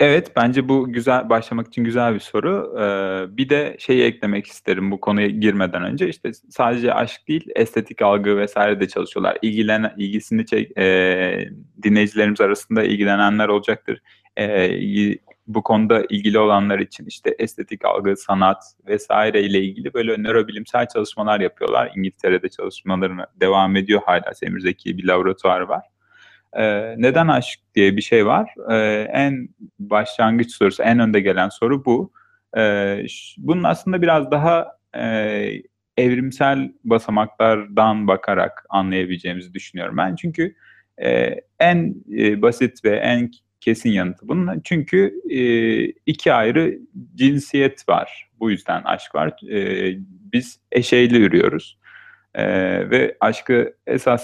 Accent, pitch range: native, 100-125 Hz